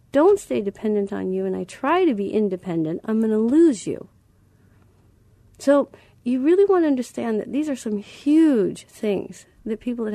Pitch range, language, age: 185-220 Hz, English, 40-59